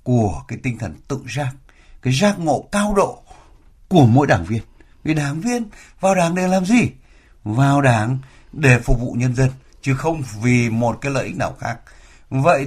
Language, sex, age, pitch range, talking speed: Vietnamese, male, 60-79, 110-160 Hz, 190 wpm